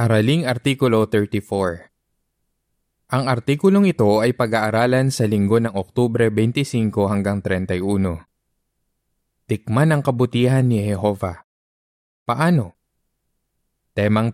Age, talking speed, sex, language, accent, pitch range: 20-39, 90 wpm, male, Filipino, native, 95-120 Hz